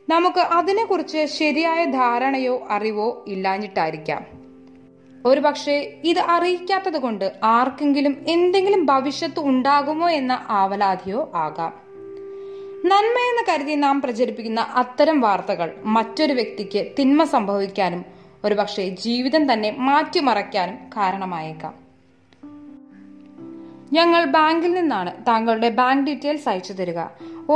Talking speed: 90 wpm